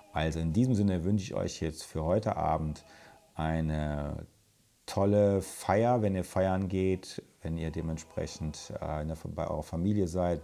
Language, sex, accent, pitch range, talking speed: German, male, German, 80-95 Hz, 160 wpm